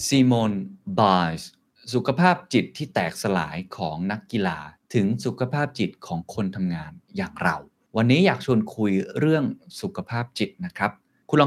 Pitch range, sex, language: 95-130 Hz, male, Thai